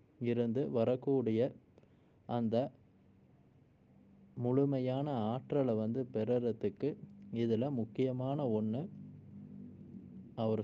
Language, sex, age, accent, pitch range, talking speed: Tamil, male, 20-39, native, 110-130 Hz, 60 wpm